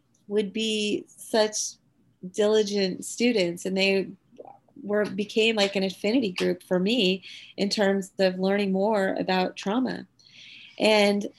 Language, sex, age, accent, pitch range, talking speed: English, female, 30-49, American, 185-205 Hz, 120 wpm